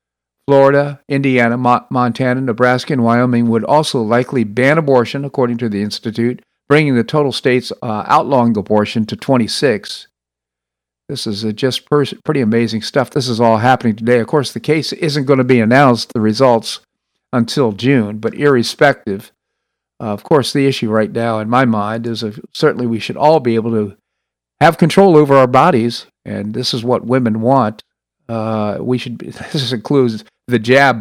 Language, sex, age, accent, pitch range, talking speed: English, male, 50-69, American, 105-130 Hz, 175 wpm